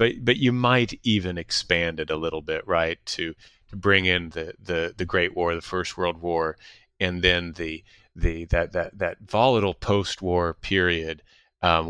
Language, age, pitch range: English, 30-49, 85-110 Hz